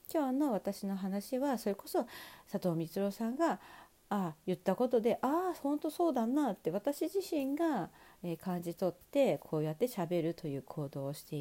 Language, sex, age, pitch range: Japanese, female, 40-59, 175-280 Hz